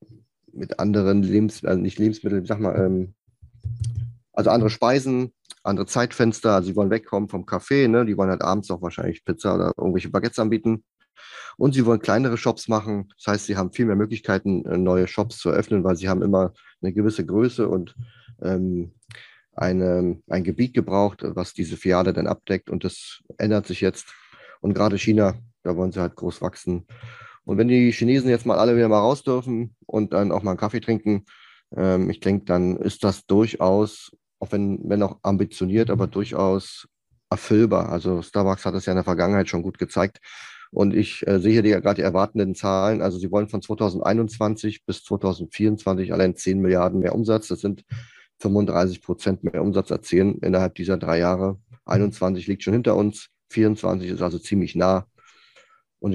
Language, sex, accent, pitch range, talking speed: German, male, German, 95-110 Hz, 180 wpm